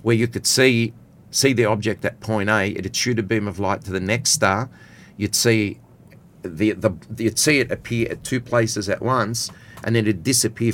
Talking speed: 205 wpm